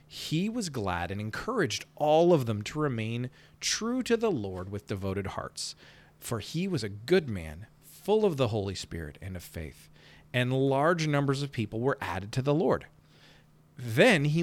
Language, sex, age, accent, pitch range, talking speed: English, male, 40-59, American, 100-160 Hz, 180 wpm